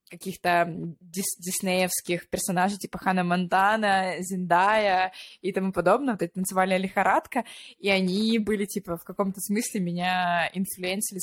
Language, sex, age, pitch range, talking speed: Russian, female, 20-39, 180-225 Hz, 125 wpm